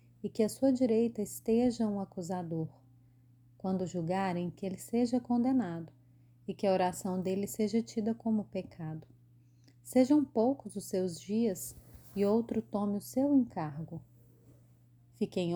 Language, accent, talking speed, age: Portuguese, Brazilian, 135 wpm, 30-49